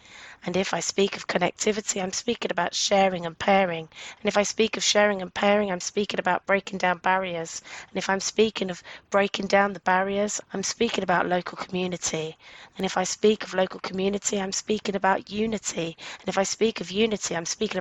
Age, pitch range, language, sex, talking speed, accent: 20-39, 180-205 Hz, English, female, 200 wpm, British